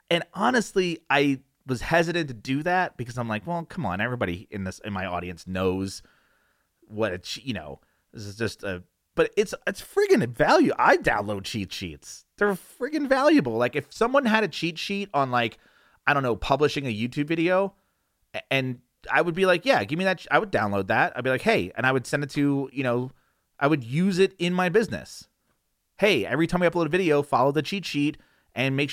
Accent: American